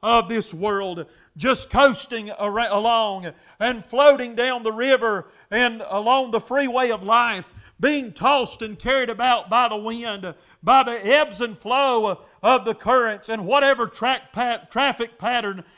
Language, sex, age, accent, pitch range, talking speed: English, male, 40-59, American, 205-255 Hz, 150 wpm